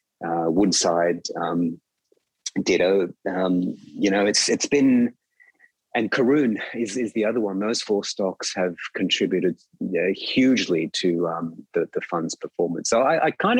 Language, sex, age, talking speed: English, male, 30-49, 150 wpm